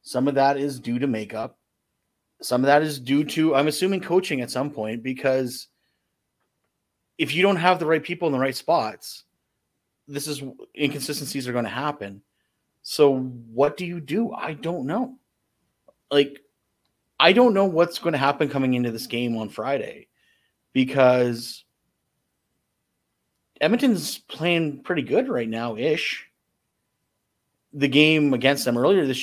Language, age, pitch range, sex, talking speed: English, 30-49, 125-155 Hz, male, 150 wpm